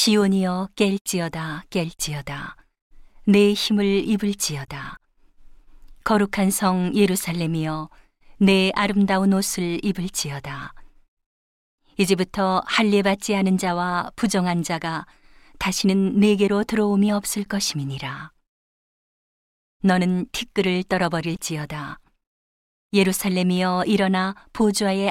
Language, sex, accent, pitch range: Korean, female, native, 170-200 Hz